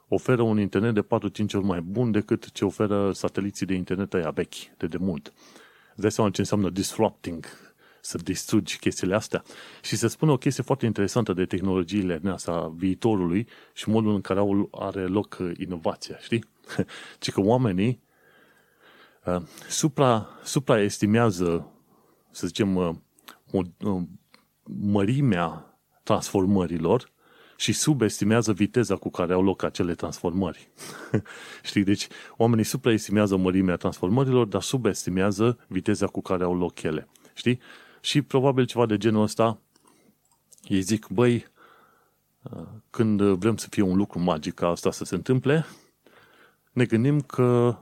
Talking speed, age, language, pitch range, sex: 125 wpm, 30-49, Romanian, 95-115 Hz, male